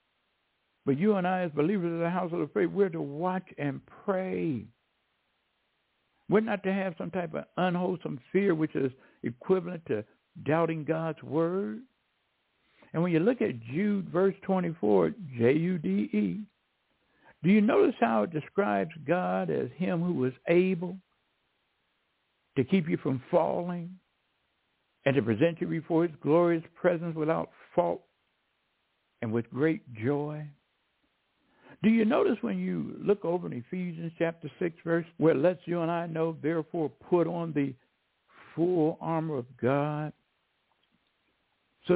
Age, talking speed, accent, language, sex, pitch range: 60-79, 145 wpm, American, English, male, 155-185 Hz